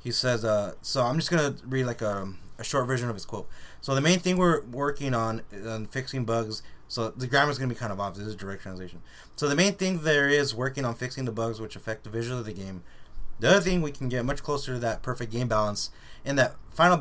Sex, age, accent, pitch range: male, 20-39, American, 105-130 Hz